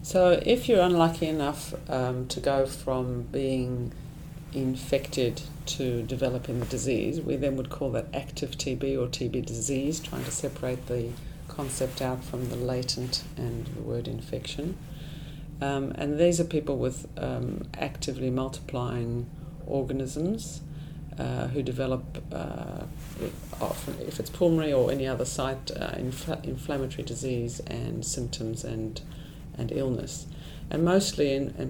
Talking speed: 135 wpm